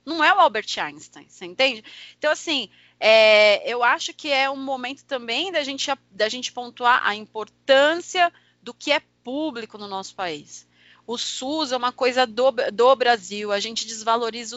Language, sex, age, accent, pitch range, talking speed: Portuguese, female, 30-49, Brazilian, 220-275 Hz, 165 wpm